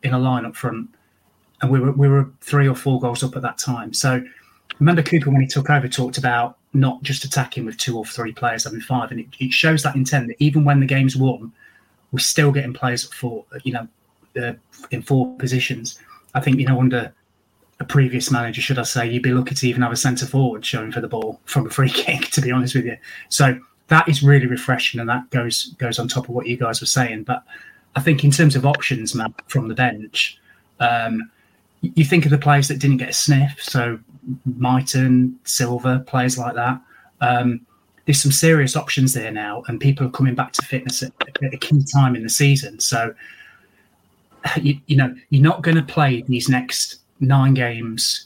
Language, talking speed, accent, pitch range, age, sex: English, 215 wpm, British, 120-140 Hz, 30-49, male